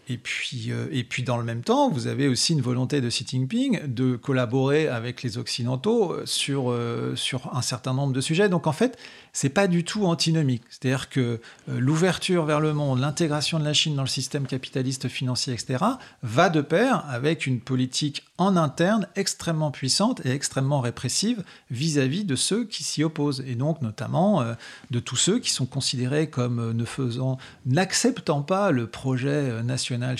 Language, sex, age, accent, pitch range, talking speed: French, male, 40-59, French, 125-155 Hz, 185 wpm